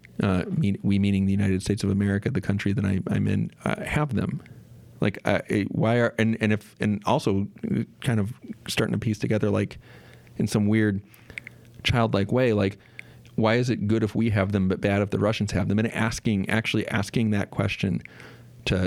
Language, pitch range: English, 100-120 Hz